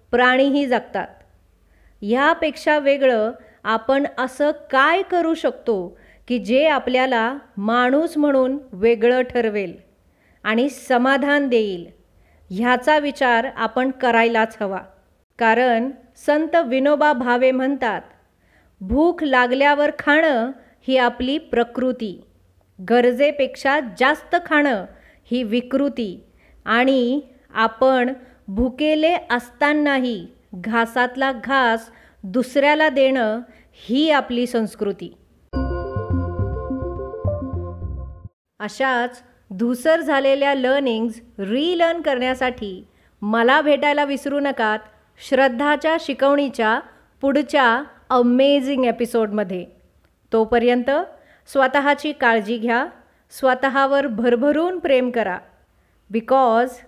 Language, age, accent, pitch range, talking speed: Marathi, 30-49, native, 225-280 Hz, 85 wpm